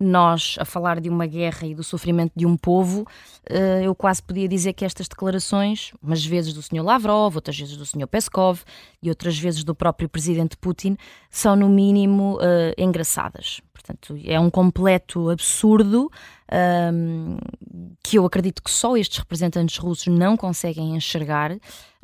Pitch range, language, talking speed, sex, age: 170-220 Hz, Portuguese, 150 wpm, female, 20-39